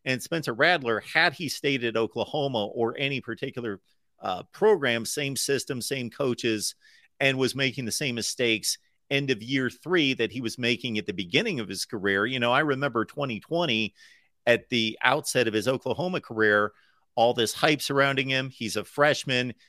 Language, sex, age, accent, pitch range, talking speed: English, male, 40-59, American, 115-145 Hz, 175 wpm